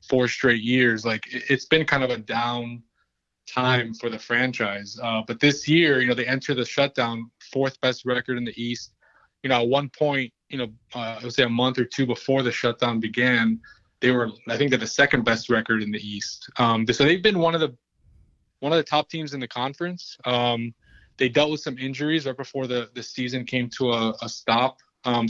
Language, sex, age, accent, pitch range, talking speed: English, male, 20-39, American, 120-140 Hz, 220 wpm